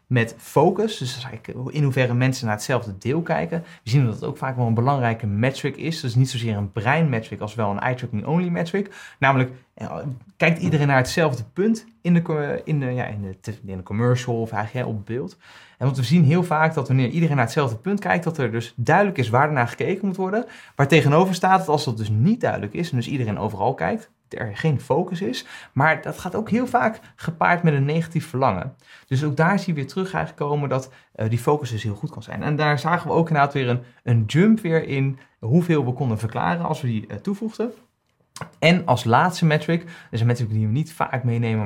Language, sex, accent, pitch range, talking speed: Dutch, male, Dutch, 115-160 Hz, 225 wpm